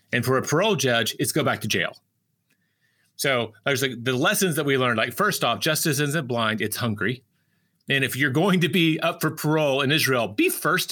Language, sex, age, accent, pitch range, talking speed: English, male, 30-49, American, 120-150 Hz, 215 wpm